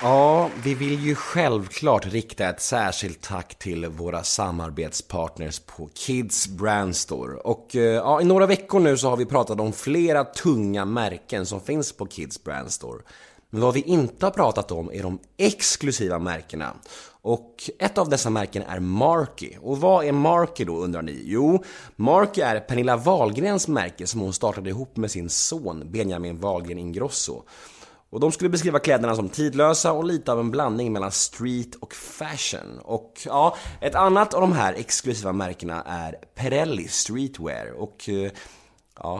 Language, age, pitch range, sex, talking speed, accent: Swedish, 30-49, 95-140 Hz, male, 160 wpm, native